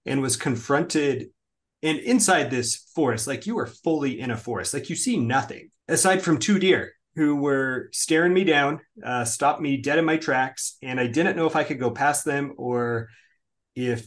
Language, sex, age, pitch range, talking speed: English, male, 30-49, 115-155 Hz, 195 wpm